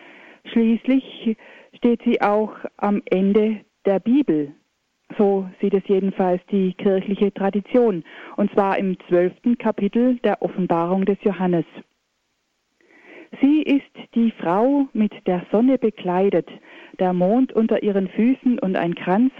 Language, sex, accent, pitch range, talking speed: German, female, German, 190-245 Hz, 125 wpm